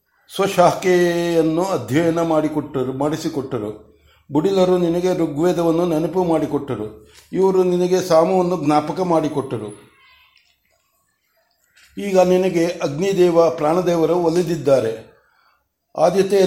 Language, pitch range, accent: Kannada, 155-180 Hz, native